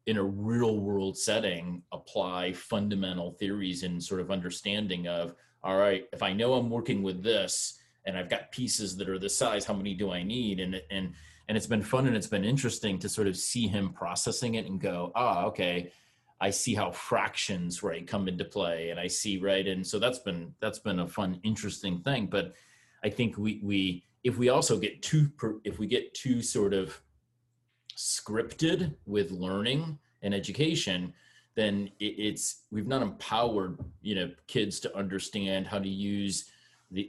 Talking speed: 185 wpm